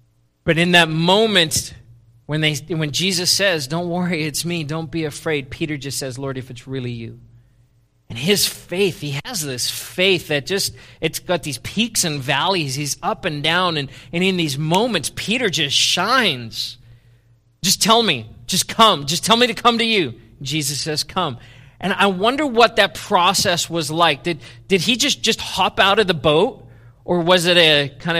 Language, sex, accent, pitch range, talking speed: English, male, American, 125-190 Hz, 190 wpm